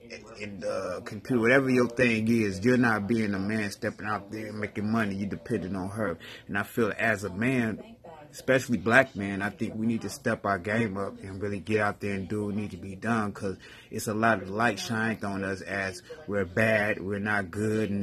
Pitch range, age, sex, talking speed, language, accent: 100-120 Hz, 30-49, male, 225 wpm, English, American